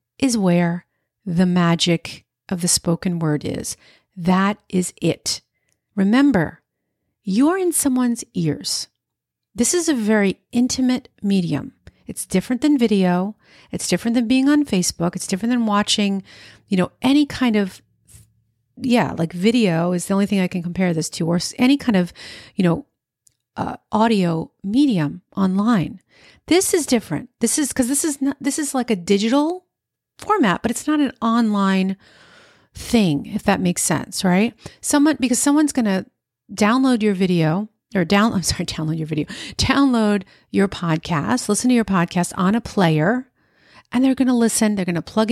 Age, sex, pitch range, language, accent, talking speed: 40-59, female, 180-235 Hz, English, American, 165 wpm